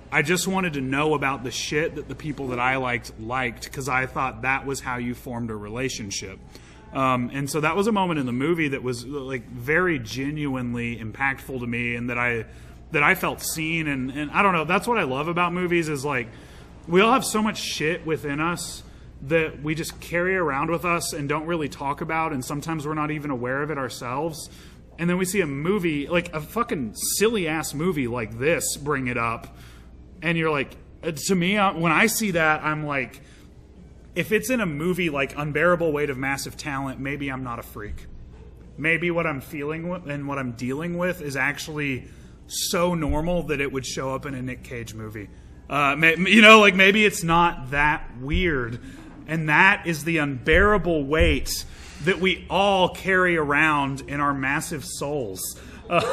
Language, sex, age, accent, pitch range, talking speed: English, male, 30-49, American, 130-170 Hz, 195 wpm